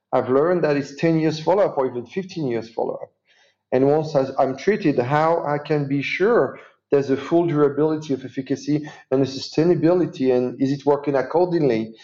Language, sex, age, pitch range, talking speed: English, male, 40-59, 130-155 Hz, 175 wpm